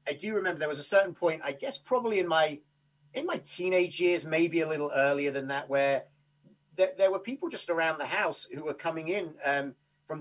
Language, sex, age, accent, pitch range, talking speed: English, male, 40-59, British, 140-175 Hz, 225 wpm